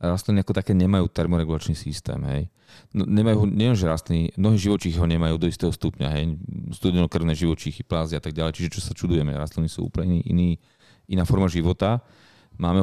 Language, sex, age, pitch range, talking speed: Slovak, male, 30-49, 85-100 Hz, 155 wpm